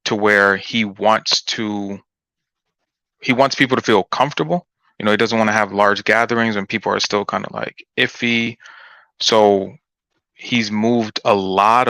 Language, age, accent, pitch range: English, 20-39, American, 100-115 Hz